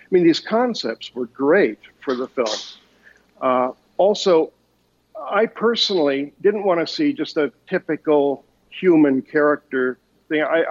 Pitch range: 135-180 Hz